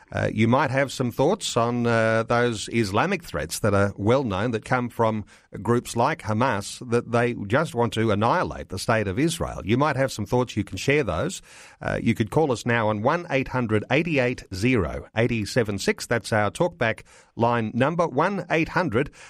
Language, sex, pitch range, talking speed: English, male, 110-145 Hz, 190 wpm